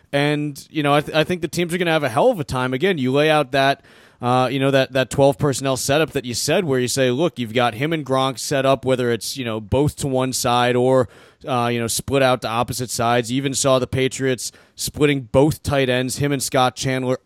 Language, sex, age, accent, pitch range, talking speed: English, male, 30-49, American, 125-155 Hz, 260 wpm